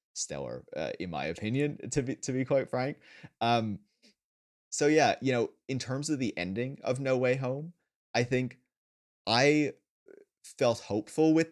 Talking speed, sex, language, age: 160 wpm, male, English, 30-49